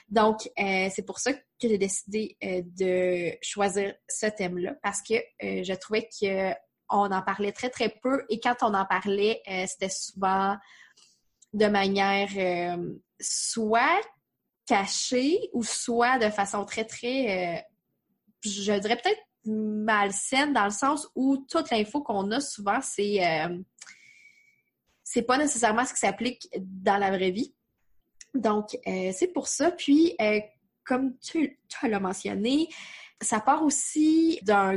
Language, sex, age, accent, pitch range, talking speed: French, female, 20-39, Canadian, 200-255 Hz, 150 wpm